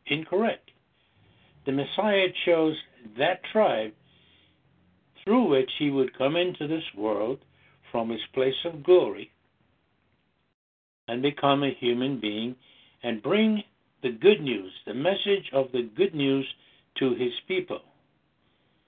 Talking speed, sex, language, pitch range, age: 120 wpm, male, English, 125-175 Hz, 60-79